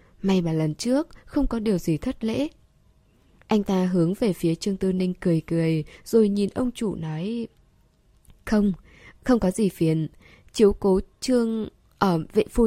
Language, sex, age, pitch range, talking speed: Vietnamese, female, 10-29, 170-220 Hz, 170 wpm